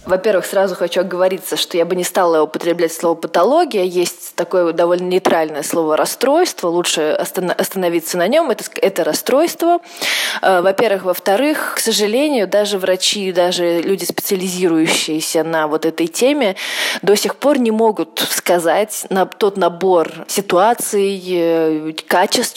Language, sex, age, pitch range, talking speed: Russian, female, 20-39, 165-200 Hz, 130 wpm